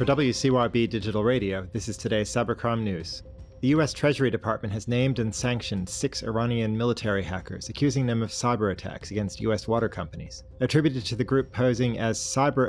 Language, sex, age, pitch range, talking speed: English, male, 30-49, 105-125 Hz, 175 wpm